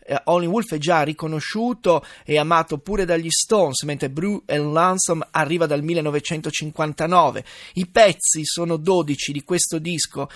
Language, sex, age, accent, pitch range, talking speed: Italian, male, 30-49, native, 150-185 Hz, 135 wpm